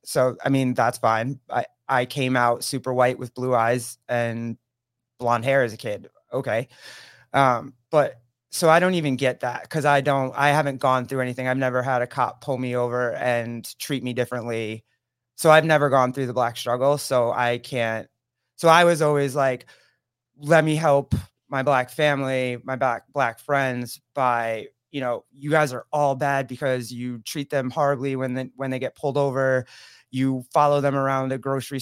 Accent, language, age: American, English, 20-39